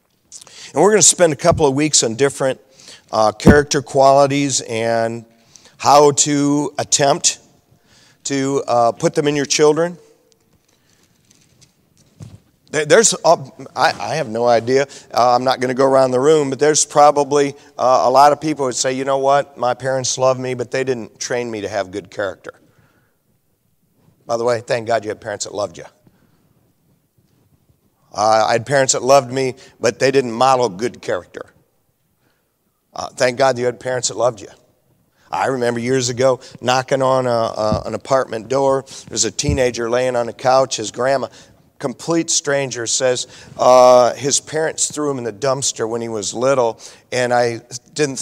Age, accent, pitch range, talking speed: 50-69, American, 120-140 Hz, 170 wpm